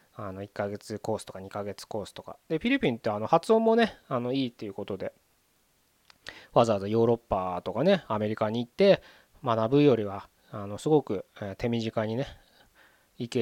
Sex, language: male, Japanese